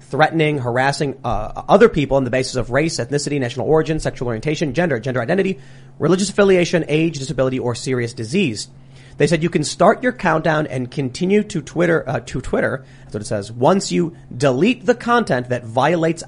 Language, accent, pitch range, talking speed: English, American, 125-155 Hz, 175 wpm